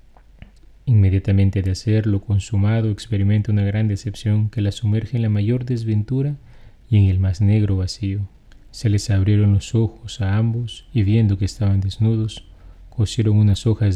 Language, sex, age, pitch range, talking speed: Spanish, male, 30-49, 95-110 Hz, 155 wpm